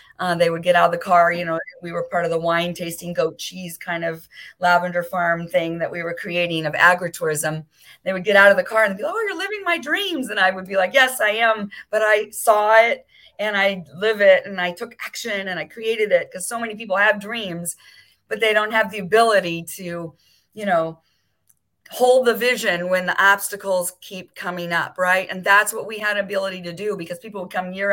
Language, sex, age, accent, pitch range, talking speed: English, female, 40-59, American, 175-215 Hz, 230 wpm